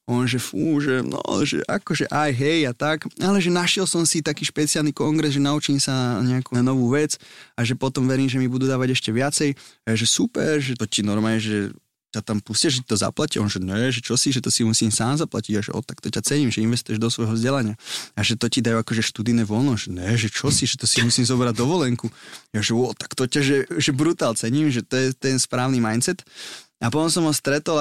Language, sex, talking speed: Slovak, male, 250 wpm